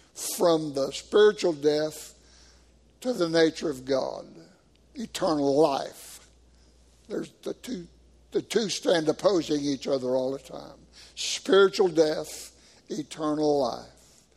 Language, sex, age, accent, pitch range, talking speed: English, male, 60-79, American, 135-220 Hz, 115 wpm